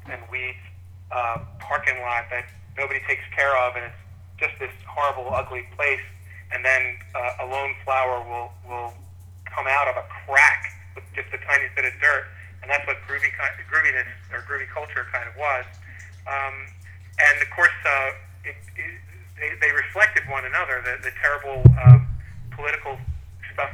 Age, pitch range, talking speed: 40-59, 90-125 Hz, 165 wpm